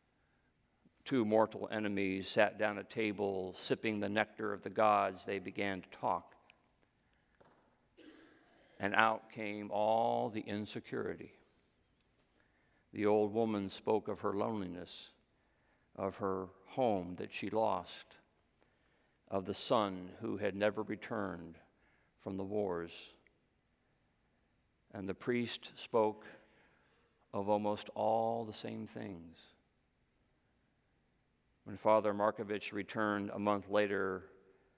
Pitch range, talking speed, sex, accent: 100-115 Hz, 110 wpm, male, American